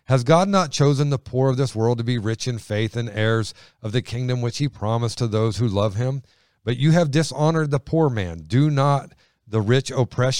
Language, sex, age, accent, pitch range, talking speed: English, male, 40-59, American, 110-140 Hz, 225 wpm